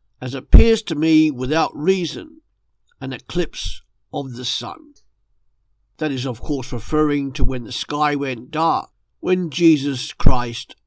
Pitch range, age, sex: 130-200 Hz, 50-69, male